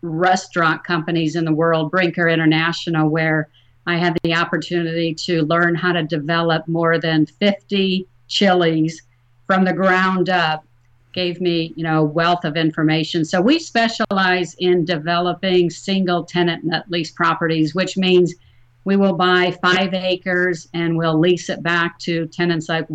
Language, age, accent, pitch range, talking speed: English, 50-69, American, 160-180 Hz, 145 wpm